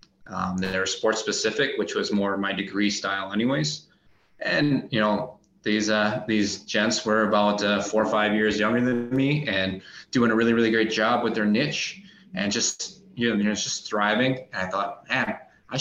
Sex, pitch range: male, 100-110 Hz